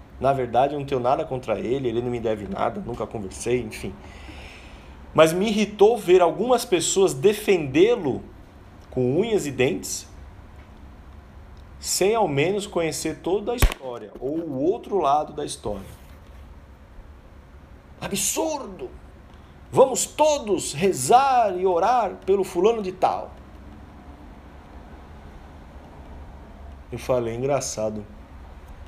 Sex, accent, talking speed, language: male, Brazilian, 110 wpm, Portuguese